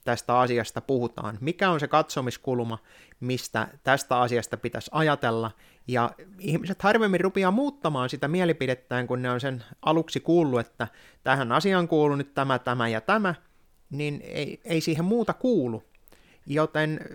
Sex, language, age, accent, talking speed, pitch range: male, Finnish, 30-49, native, 145 wpm, 120-165 Hz